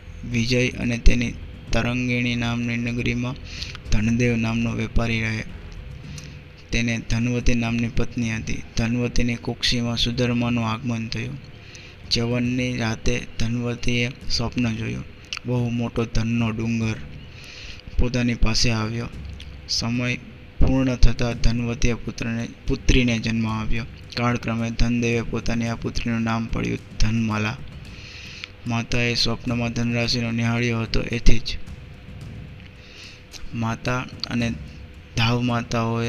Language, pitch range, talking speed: Gujarati, 110-120 Hz, 80 wpm